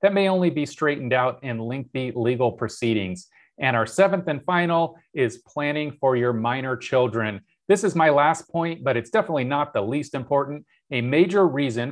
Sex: male